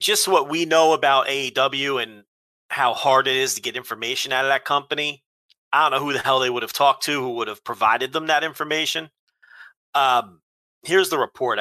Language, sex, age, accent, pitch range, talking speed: English, male, 30-49, American, 115-150 Hz, 205 wpm